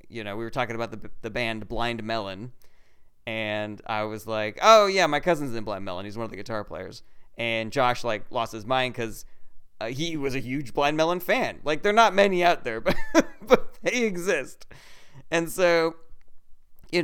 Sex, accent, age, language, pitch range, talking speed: male, American, 30-49, English, 105-145 Hz, 200 wpm